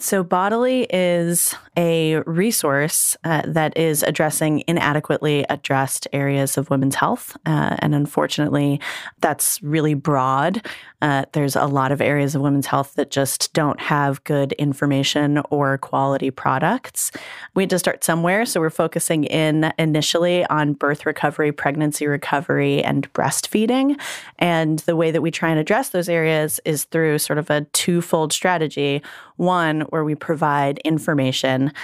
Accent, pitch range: American, 145-170 Hz